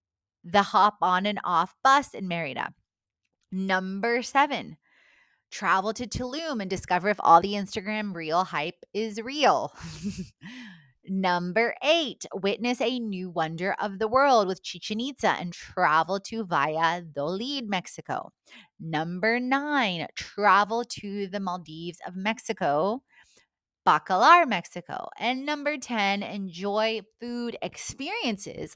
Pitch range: 175-230 Hz